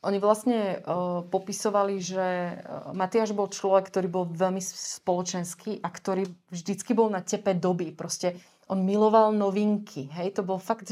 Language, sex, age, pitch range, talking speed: Slovak, female, 30-49, 165-185 Hz, 155 wpm